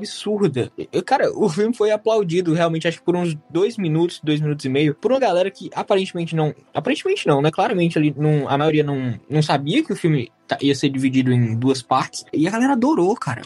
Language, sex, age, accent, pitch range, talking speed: Portuguese, male, 20-39, Brazilian, 150-200 Hz, 220 wpm